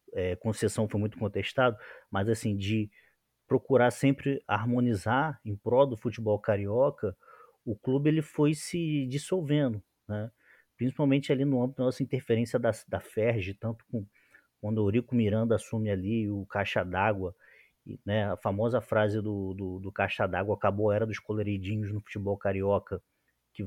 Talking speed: 155 wpm